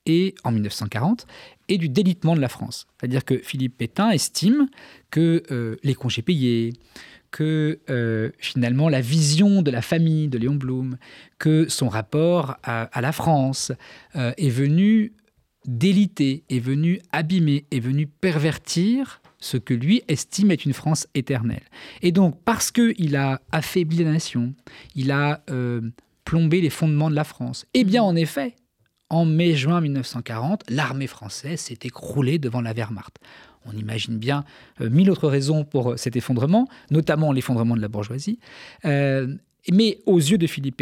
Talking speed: 160 wpm